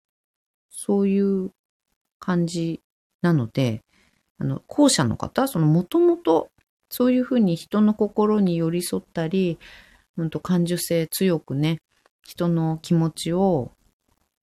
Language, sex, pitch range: Japanese, female, 155-215 Hz